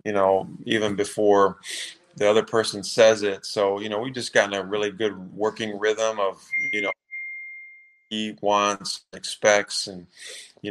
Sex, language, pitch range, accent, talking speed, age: male, English, 100-110 Hz, American, 155 wpm, 30-49